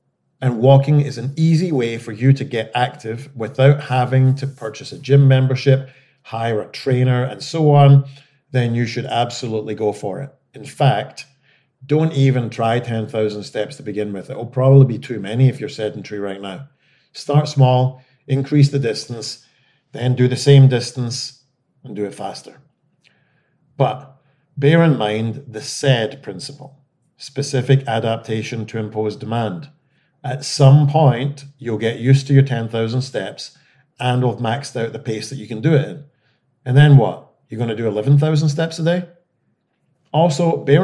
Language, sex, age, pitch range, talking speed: English, male, 40-59, 120-145 Hz, 165 wpm